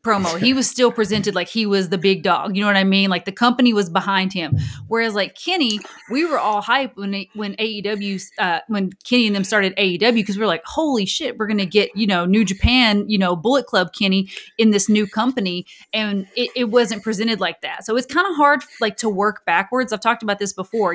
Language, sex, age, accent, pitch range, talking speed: English, female, 30-49, American, 185-220 Hz, 240 wpm